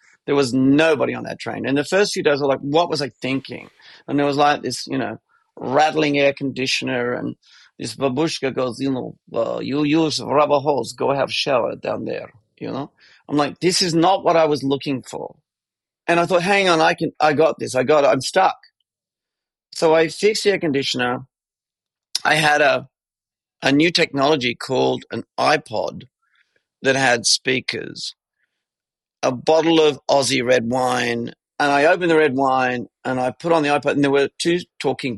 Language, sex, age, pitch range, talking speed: English, male, 40-59, 130-160 Hz, 195 wpm